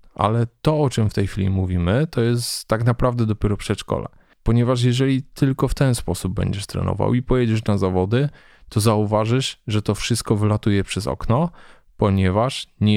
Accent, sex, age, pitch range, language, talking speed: native, male, 20-39, 95-120 Hz, Polish, 165 wpm